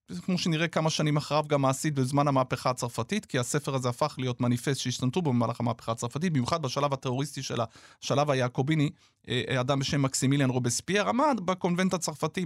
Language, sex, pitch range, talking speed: Hebrew, male, 135-205 Hz, 160 wpm